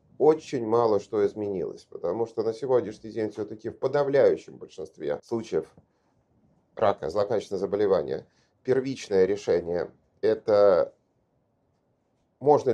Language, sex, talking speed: Russian, male, 100 wpm